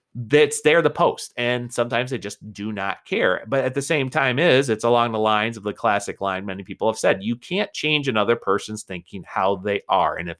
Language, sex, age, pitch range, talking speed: English, male, 30-49, 100-120 Hz, 230 wpm